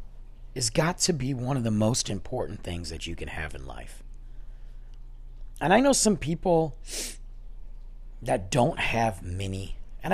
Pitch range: 110-160 Hz